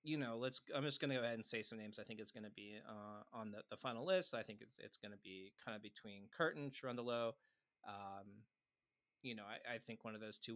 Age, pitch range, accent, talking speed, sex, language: 20-39, 100-115 Hz, American, 250 wpm, male, English